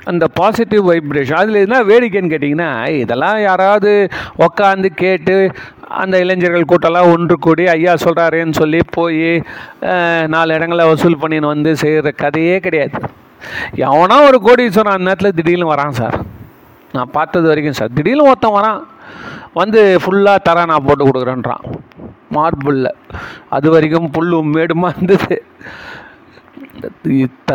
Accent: native